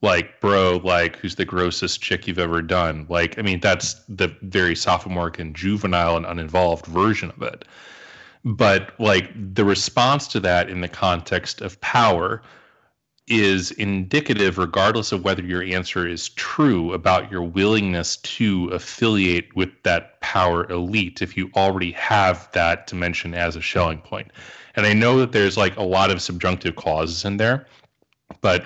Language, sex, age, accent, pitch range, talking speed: English, male, 30-49, American, 90-105 Hz, 160 wpm